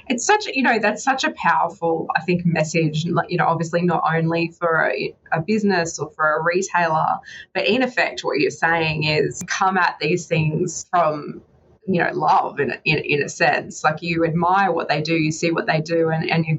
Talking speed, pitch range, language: 205 wpm, 155-185 Hz, English